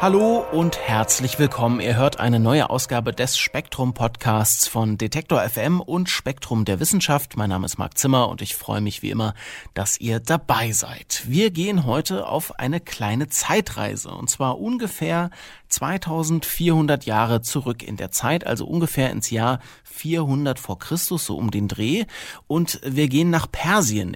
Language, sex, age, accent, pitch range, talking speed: German, male, 30-49, German, 115-160 Hz, 160 wpm